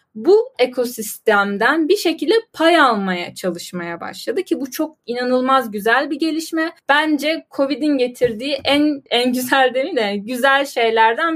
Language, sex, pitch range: Turkish, female, 245-290 Hz